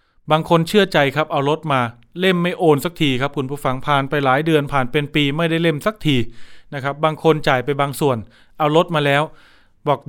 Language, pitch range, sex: Thai, 130-170 Hz, male